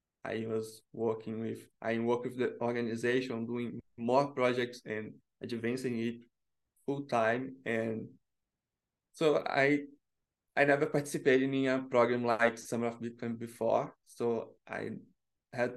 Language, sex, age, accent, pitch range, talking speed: English, male, 20-39, Brazilian, 115-130 Hz, 130 wpm